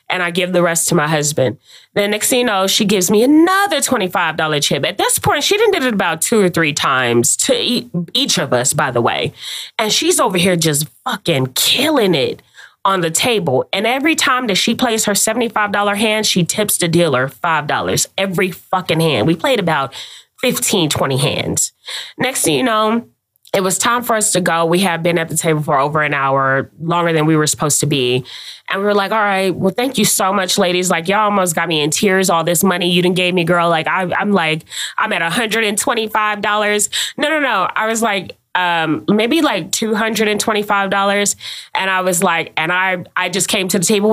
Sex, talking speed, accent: female, 210 wpm, American